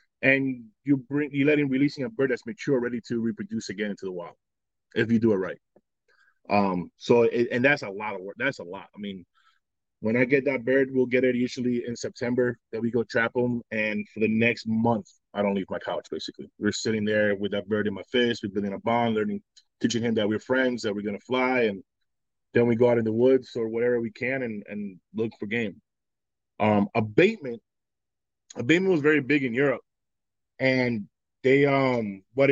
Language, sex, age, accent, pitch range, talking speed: English, male, 20-39, American, 110-135 Hz, 220 wpm